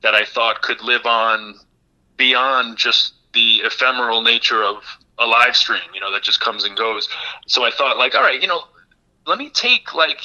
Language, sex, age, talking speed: English, male, 30-49, 200 wpm